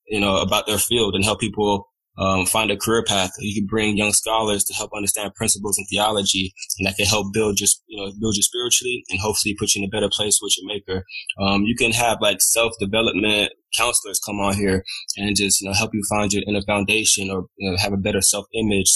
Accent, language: American, English